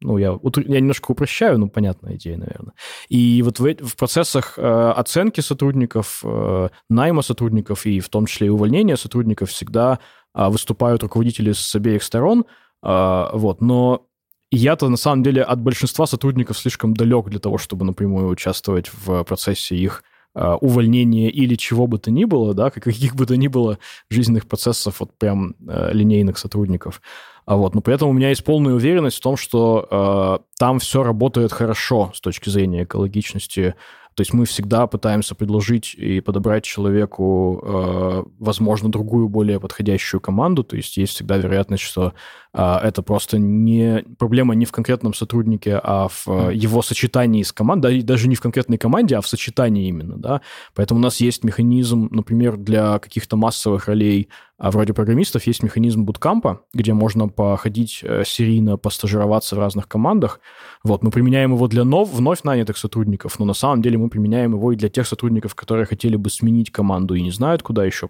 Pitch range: 100-120 Hz